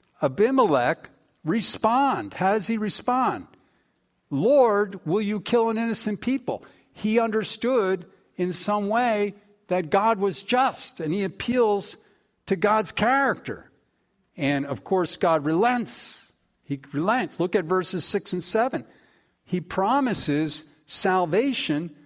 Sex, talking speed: male, 115 wpm